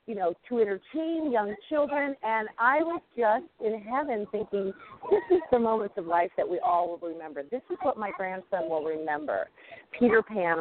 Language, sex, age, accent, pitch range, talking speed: English, female, 40-59, American, 170-245 Hz, 185 wpm